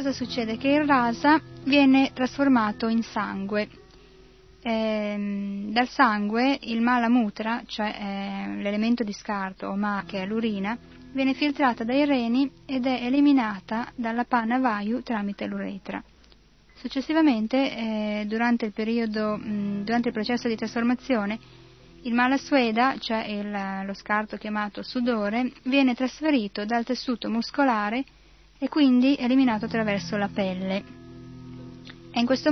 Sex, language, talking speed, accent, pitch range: female, Italian, 130 wpm, native, 205-250 Hz